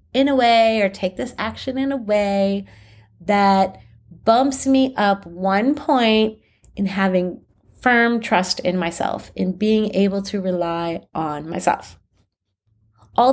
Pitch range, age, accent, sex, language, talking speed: 180-235 Hz, 30-49, American, female, English, 135 wpm